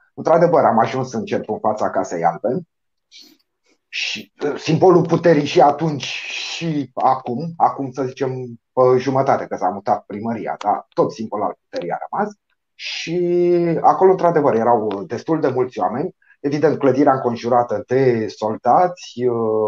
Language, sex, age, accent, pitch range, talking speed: Romanian, male, 30-49, native, 125-180 Hz, 135 wpm